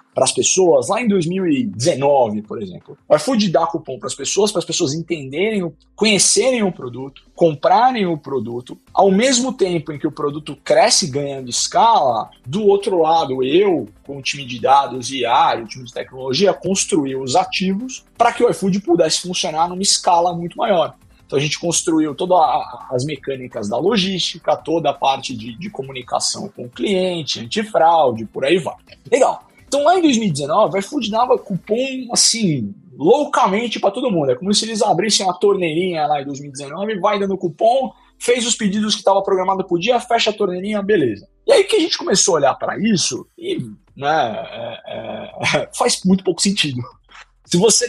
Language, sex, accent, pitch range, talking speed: Portuguese, male, Brazilian, 155-220 Hz, 180 wpm